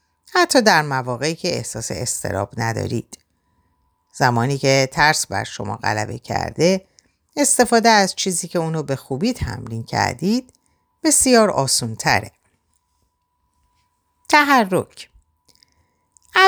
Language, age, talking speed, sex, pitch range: Persian, 50-69, 100 wpm, female, 115-175 Hz